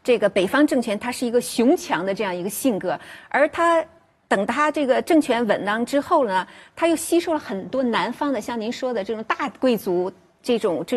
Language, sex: Chinese, female